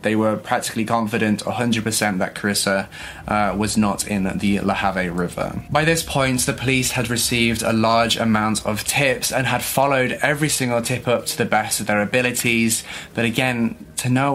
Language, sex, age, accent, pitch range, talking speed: English, male, 20-39, British, 105-120 Hz, 185 wpm